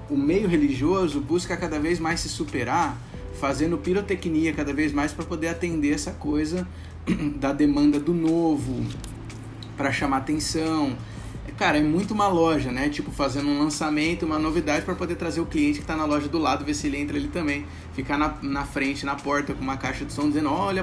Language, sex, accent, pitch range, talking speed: Portuguese, male, Brazilian, 140-175 Hz, 195 wpm